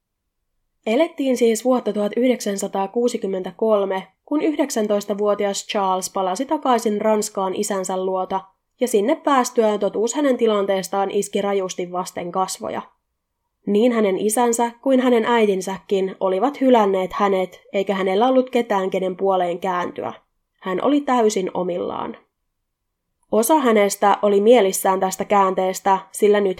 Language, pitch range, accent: Finnish, 195-235 Hz, native